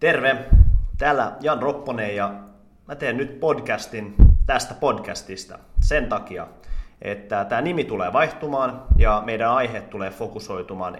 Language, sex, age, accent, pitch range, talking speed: Finnish, male, 30-49, native, 100-120 Hz, 125 wpm